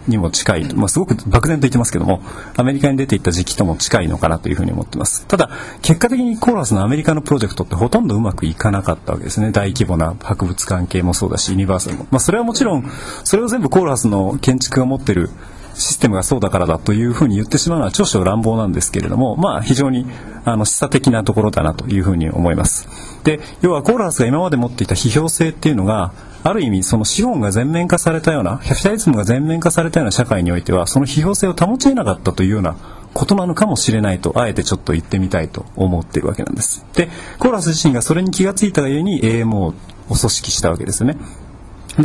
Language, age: Japanese, 40-59